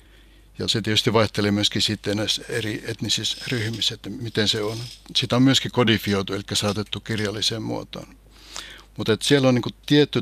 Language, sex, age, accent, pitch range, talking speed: Finnish, male, 60-79, native, 100-110 Hz, 160 wpm